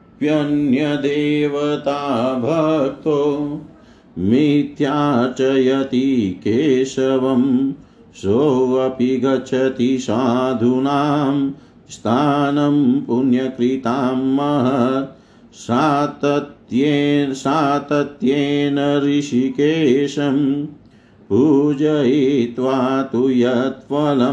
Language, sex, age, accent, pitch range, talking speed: Hindi, male, 50-69, native, 130-145 Hz, 30 wpm